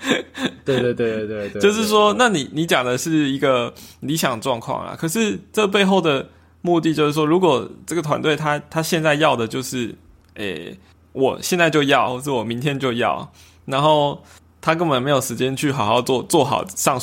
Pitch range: 120-160 Hz